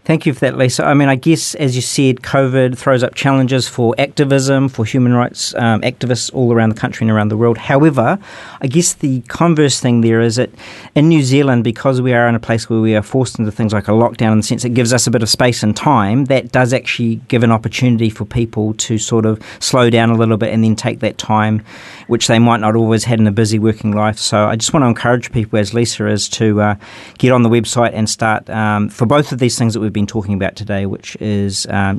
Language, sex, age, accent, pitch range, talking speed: English, male, 40-59, Australian, 110-130 Hz, 255 wpm